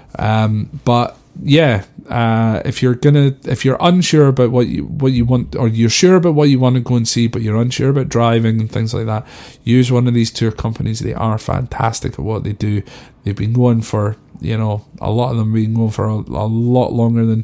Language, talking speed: English, 230 wpm